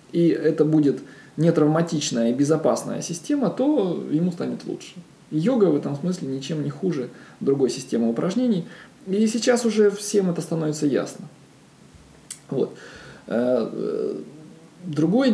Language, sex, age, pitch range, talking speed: Russian, male, 20-39, 135-185 Hz, 115 wpm